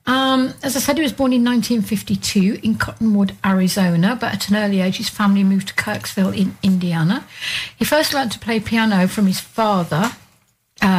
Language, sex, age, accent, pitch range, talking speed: English, female, 60-79, British, 195-235 Hz, 185 wpm